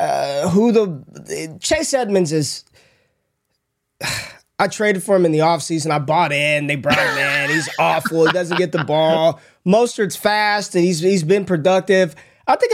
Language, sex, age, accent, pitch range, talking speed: English, male, 20-39, American, 165-210 Hz, 170 wpm